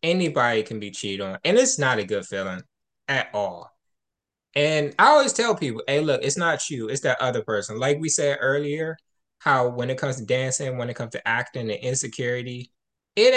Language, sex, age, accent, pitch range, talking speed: English, male, 20-39, American, 125-165 Hz, 200 wpm